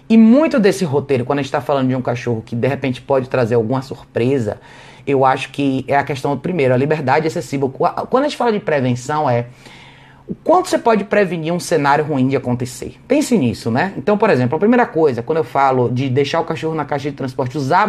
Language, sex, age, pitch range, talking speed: Portuguese, male, 20-39, 135-205 Hz, 225 wpm